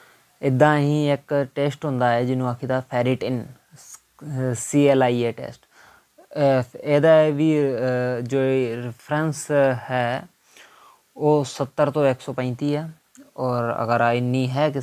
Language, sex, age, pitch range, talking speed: Punjabi, male, 20-39, 120-135 Hz, 105 wpm